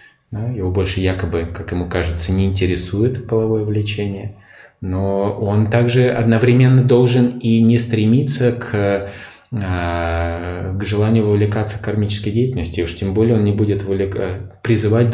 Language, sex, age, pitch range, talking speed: Russian, male, 20-39, 95-115 Hz, 125 wpm